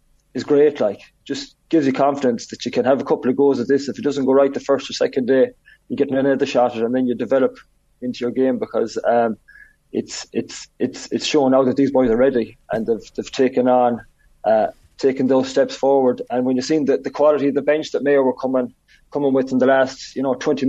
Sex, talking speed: male, 245 wpm